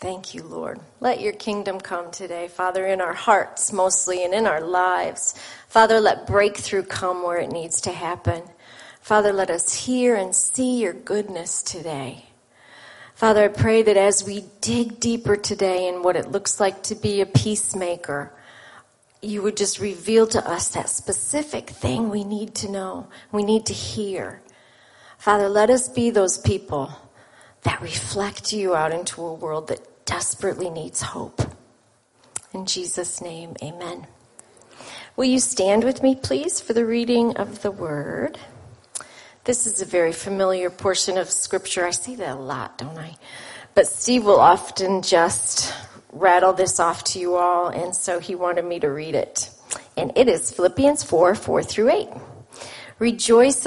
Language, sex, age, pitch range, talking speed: English, female, 40-59, 175-210 Hz, 165 wpm